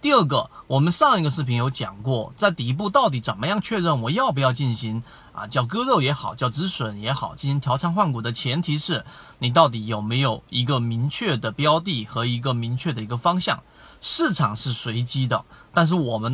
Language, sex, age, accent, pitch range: Chinese, male, 30-49, native, 120-155 Hz